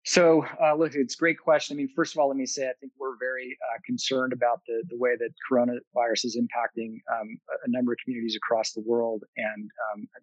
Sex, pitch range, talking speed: male, 120-145 Hz, 235 wpm